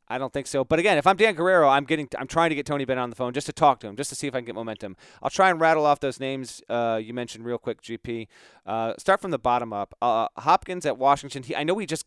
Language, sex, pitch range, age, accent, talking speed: English, male, 125-150 Hz, 30-49, American, 310 wpm